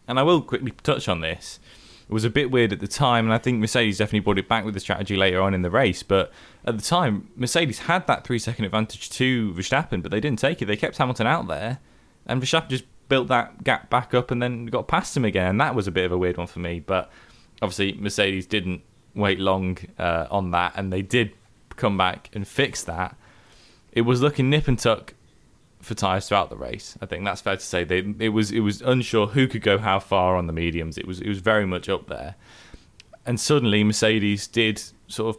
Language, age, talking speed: English, 10-29, 235 wpm